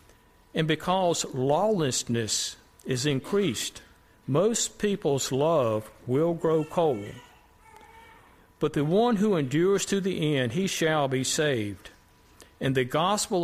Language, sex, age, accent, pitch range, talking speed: English, male, 60-79, American, 125-170 Hz, 115 wpm